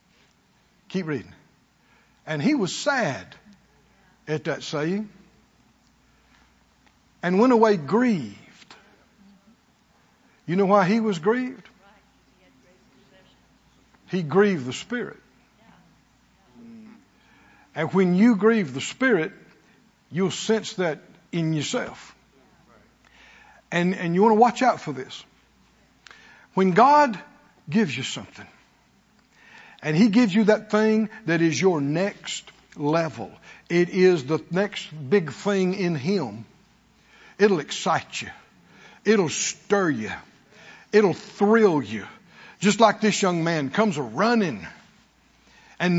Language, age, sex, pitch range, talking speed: English, 60-79, male, 175-230 Hz, 110 wpm